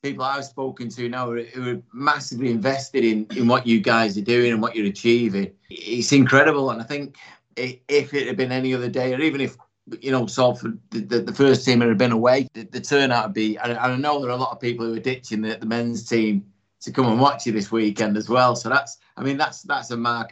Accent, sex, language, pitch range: British, male, English, 115-135 Hz